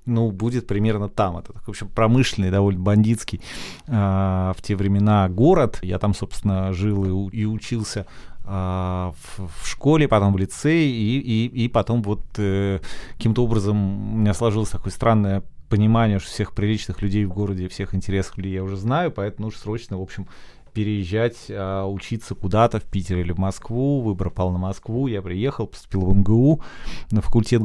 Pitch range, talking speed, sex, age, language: 95-115 Hz, 170 wpm, male, 30-49, Russian